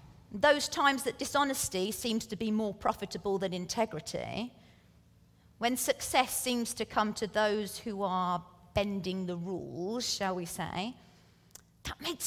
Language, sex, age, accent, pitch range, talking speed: English, female, 40-59, British, 190-275 Hz, 135 wpm